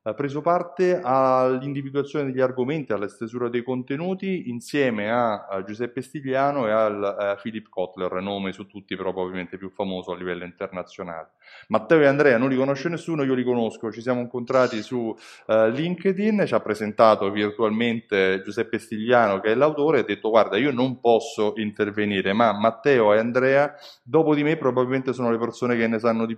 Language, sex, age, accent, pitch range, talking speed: Italian, male, 20-39, native, 105-140 Hz, 175 wpm